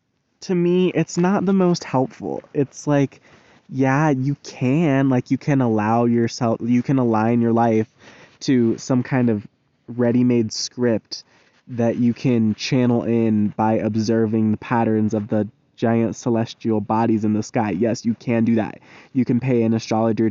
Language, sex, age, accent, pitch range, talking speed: English, male, 20-39, American, 115-145 Hz, 165 wpm